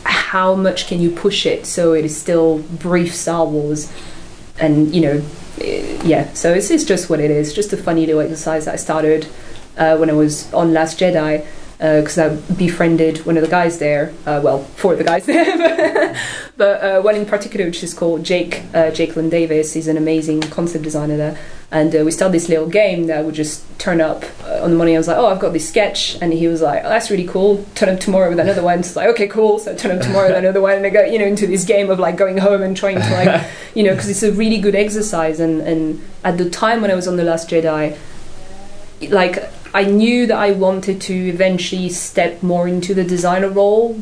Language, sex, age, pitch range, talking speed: English, female, 20-39, 160-195 Hz, 240 wpm